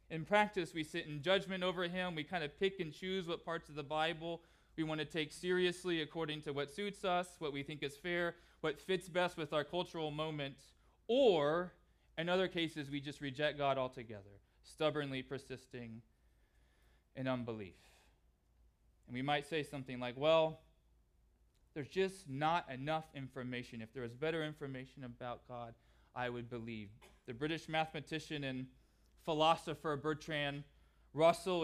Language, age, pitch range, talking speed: English, 20-39, 125-175 Hz, 155 wpm